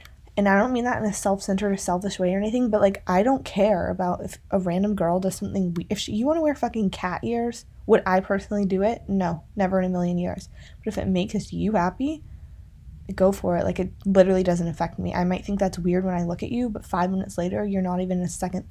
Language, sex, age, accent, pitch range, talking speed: English, female, 20-39, American, 175-210 Hz, 250 wpm